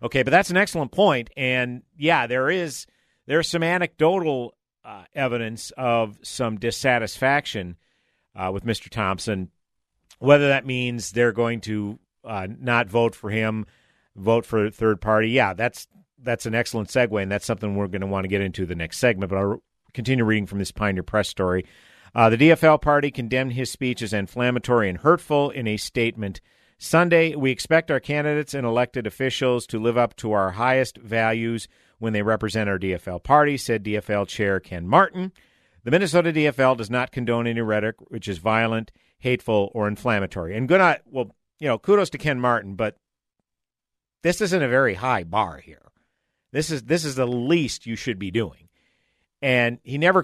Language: English